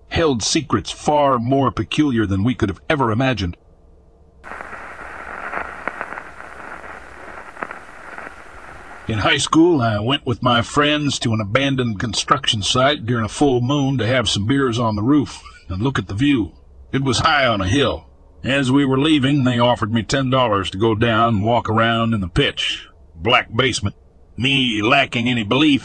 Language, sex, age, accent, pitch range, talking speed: English, male, 60-79, American, 100-130 Hz, 160 wpm